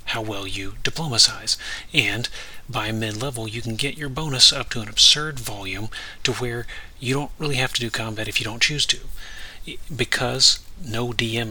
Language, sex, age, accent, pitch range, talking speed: English, male, 40-59, American, 105-130 Hz, 175 wpm